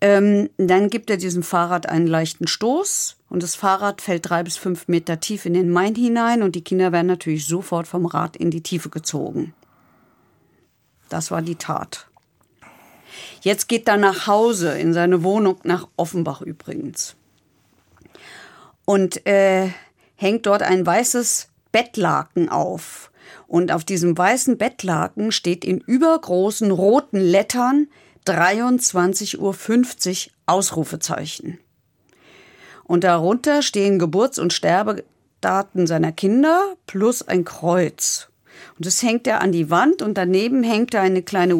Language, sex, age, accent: German, female, 50-69, German